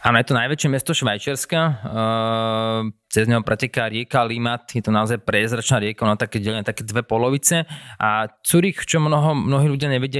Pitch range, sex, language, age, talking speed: 115-140 Hz, male, Slovak, 20-39, 170 wpm